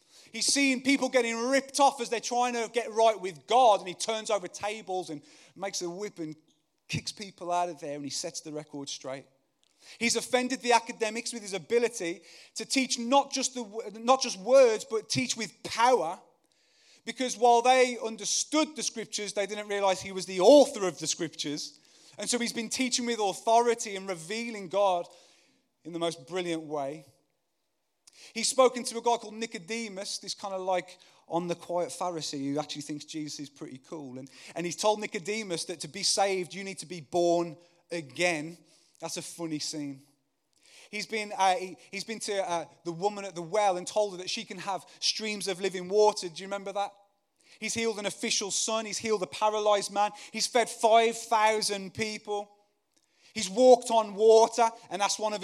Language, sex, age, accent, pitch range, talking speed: English, male, 30-49, British, 175-225 Hz, 190 wpm